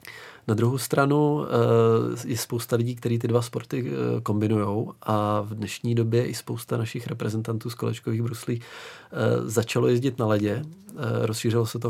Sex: male